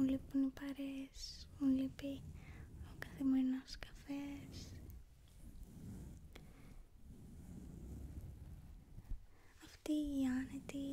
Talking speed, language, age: 65 wpm, English, 20-39